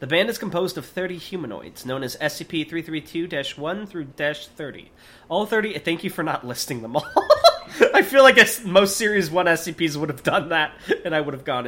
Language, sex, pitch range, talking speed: English, male, 120-175 Hz, 185 wpm